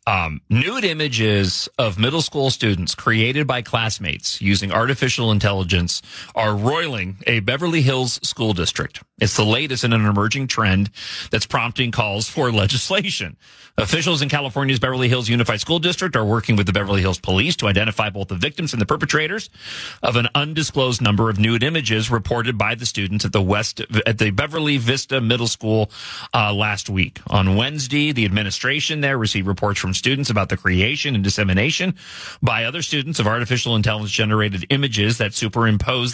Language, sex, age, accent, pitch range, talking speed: English, male, 40-59, American, 105-130 Hz, 165 wpm